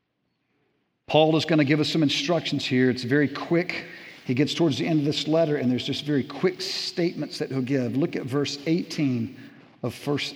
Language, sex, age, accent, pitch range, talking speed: English, male, 50-69, American, 135-170 Hz, 205 wpm